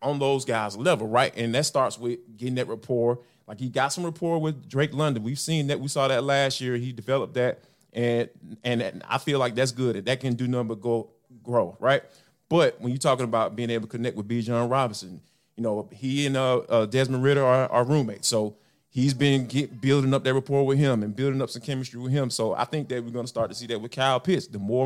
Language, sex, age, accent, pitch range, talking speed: English, male, 30-49, American, 120-145 Hz, 250 wpm